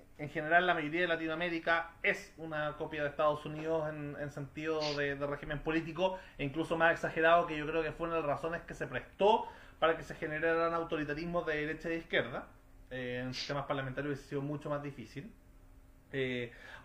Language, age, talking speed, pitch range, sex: Spanish, 30-49, 195 wpm, 150-195 Hz, male